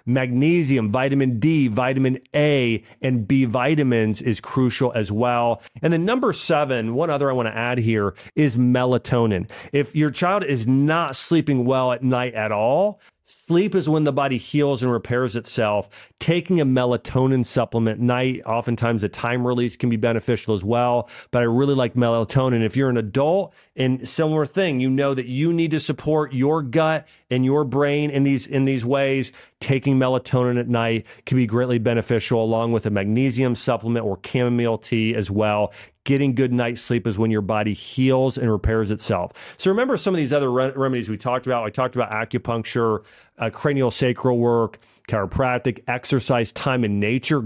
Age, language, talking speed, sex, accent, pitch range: 40-59, English, 180 wpm, male, American, 115-140 Hz